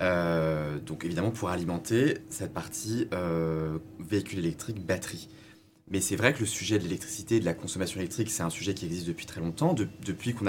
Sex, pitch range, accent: male, 95-115 Hz, French